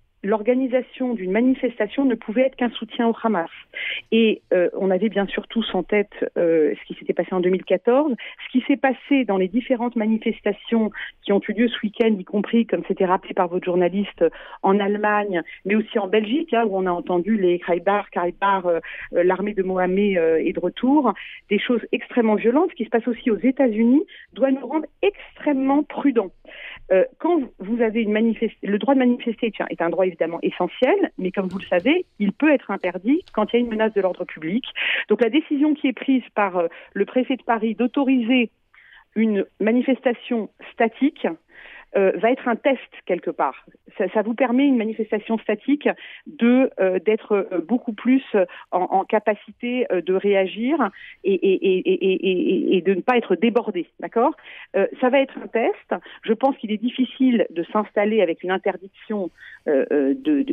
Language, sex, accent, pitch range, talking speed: Italian, female, French, 195-260 Hz, 180 wpm